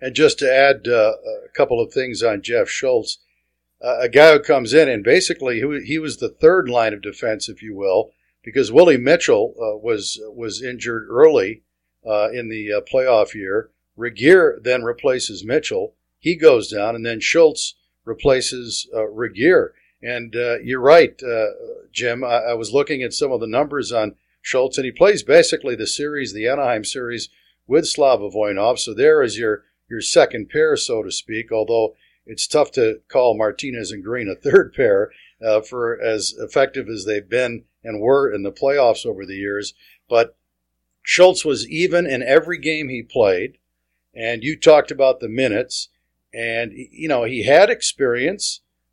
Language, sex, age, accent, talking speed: English, male, 50-69, American, 175 wpm